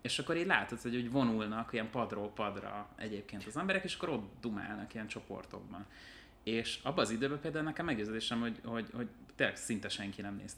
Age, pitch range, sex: 30-49, 105-120 Hz, male